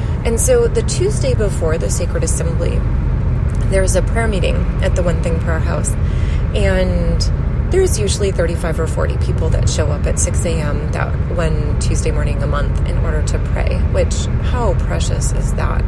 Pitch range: 75-95 Hz